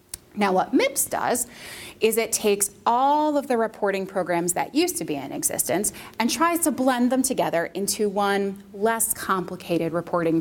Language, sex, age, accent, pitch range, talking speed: English, female, 20-39, American, 175-240 Hz, 165 wpm